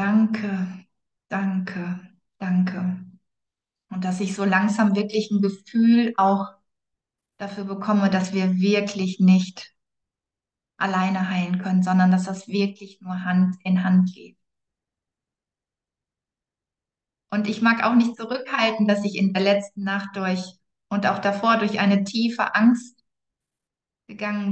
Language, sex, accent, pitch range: German, female, German, 190-220 Hz